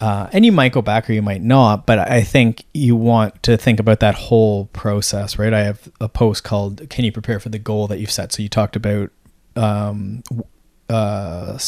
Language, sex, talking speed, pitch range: English, male, 215 wpm, 105-115 Hz